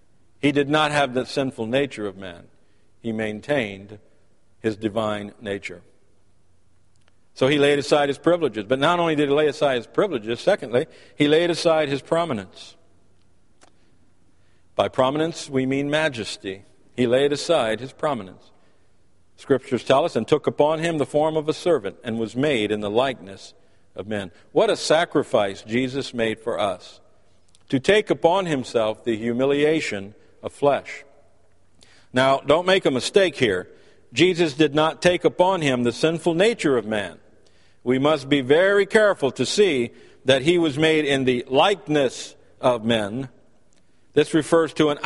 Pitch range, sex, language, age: 105-155 Hz, male, English, 50-69